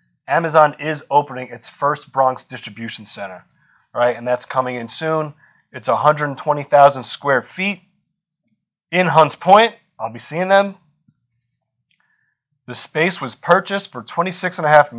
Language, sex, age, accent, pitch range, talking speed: English, male, 30-49, American, 130-165 Hz, 125 wpm